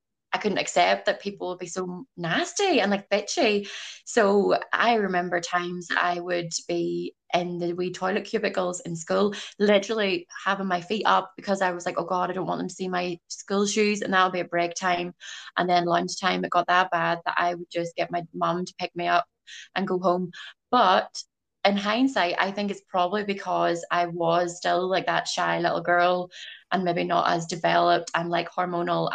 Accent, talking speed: British, 200 wpm